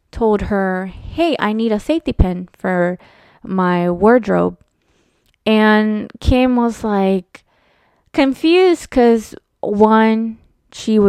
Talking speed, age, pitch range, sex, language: 105 wpm, 20-39, 185-230 Hz, female, English